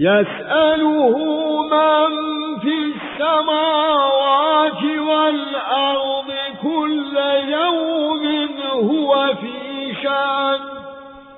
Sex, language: male, English